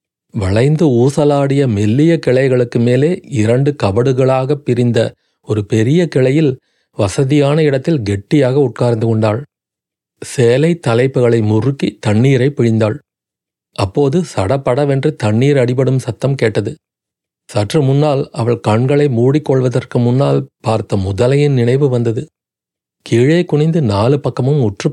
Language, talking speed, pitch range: Tamil, 100 wpm, 110-145 Hz